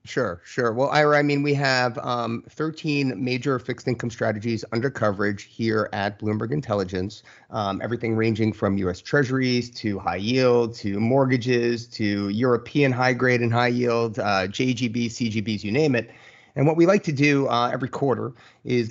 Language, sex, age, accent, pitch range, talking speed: English, male, 30-49, American, 110-135 Hz, 170 wpm